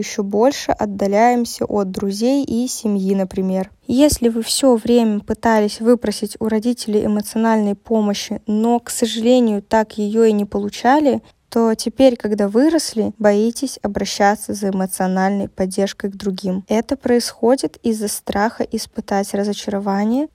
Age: 10-29